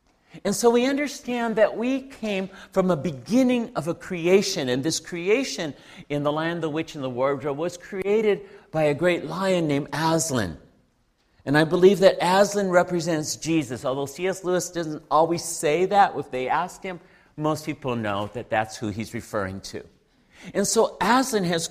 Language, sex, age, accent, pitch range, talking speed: English, male, 50-69, American, 150-200 Hz, 175 wpm